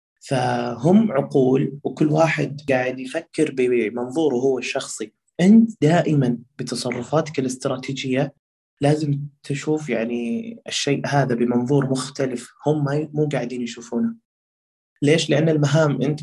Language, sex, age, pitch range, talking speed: Arabic, male, 20-39, 120-145 Hz, 105 wpm